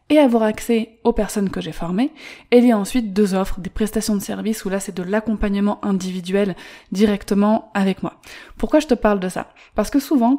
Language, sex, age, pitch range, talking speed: French, female, 20-39, 190-230 Hz, 215 wpm